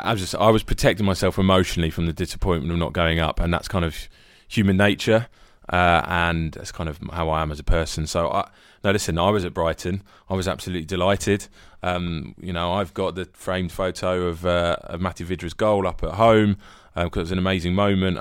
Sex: male